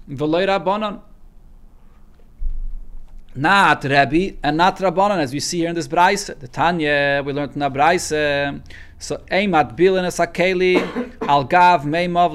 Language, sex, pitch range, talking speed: English, male, 160-200 Hz, 135 wpm